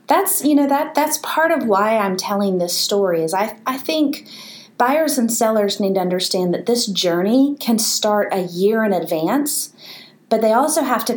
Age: 30-49